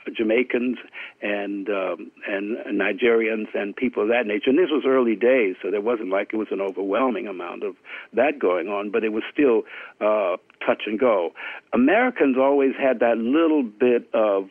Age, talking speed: 60-79, 180 wpm